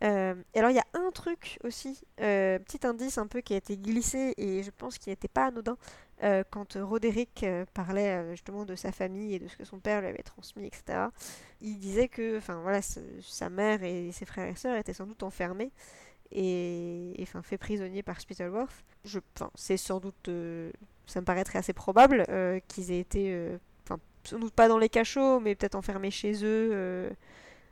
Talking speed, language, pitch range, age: 205 wpm, French, 185-230 Hz, 20-39